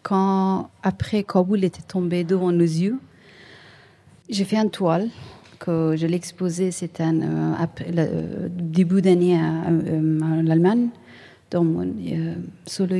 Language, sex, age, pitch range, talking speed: French, female, 40-59, 165-210 Hz, 130 wpm